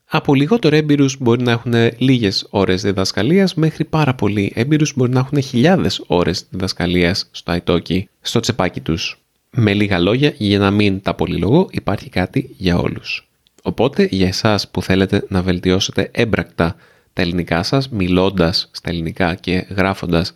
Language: Greek